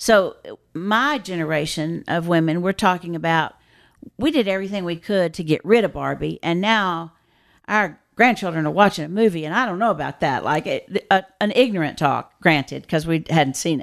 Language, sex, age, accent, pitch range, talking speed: English, female, 50-69, American, 165-205 Hz, 180 wpm